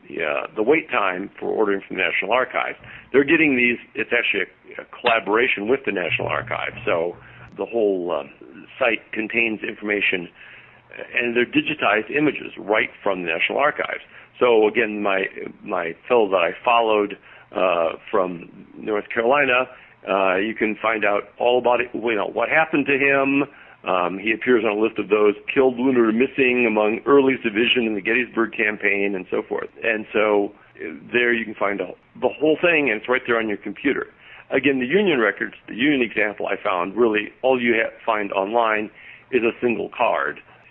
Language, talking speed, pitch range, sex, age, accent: English, 175 wpm, 105-130 Hz, male, 60-79, American